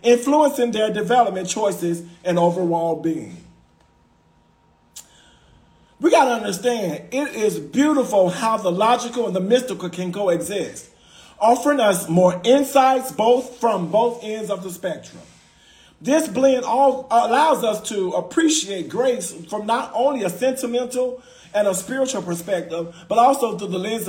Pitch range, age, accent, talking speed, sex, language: 185-255 Hz, 40-59, American, 135 wpm, male, English